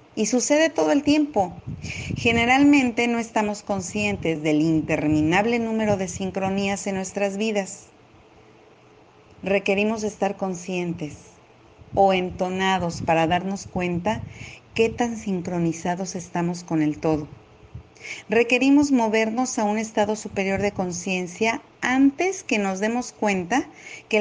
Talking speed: 115 wpm